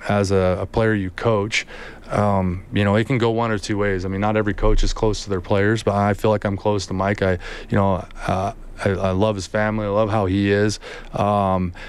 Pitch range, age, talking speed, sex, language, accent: 100-115 Hz, 20-39, 245 wpm, male, English, American